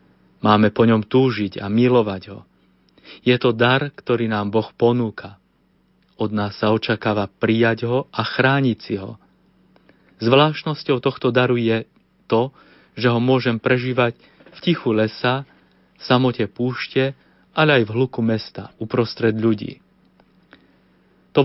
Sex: male